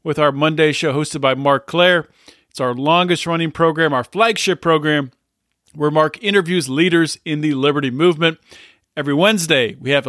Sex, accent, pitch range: male, American, 140-195 Hz